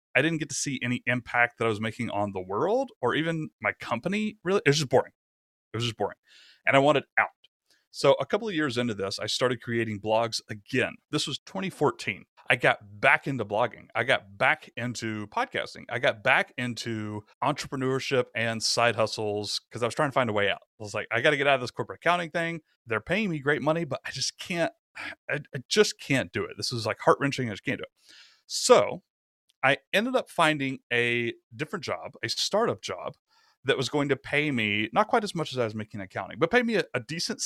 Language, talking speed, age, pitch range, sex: English, 225 wpm, 30-49, 110-155 Hz, male